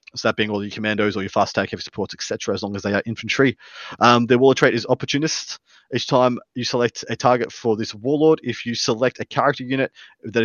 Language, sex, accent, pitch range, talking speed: English, male, Australian, 115-140 Hz, 235 wpm